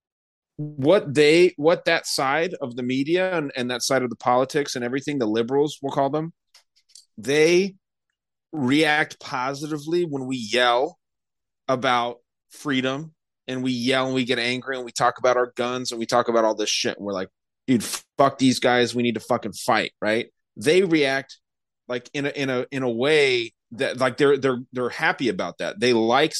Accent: American